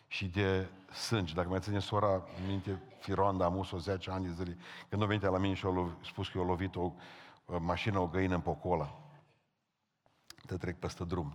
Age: 50-69